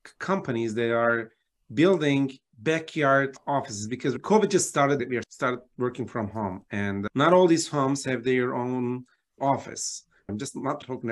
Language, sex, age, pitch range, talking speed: English, male, 40-59, 125-175 Hz, 155 wpm